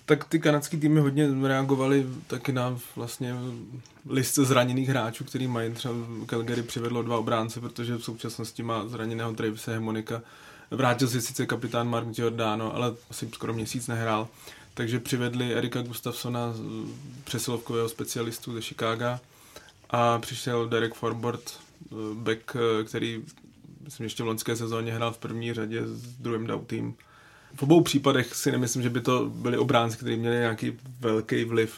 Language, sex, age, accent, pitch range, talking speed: Czech, male, 20-39, native, 115-125 Hz, 145 wpm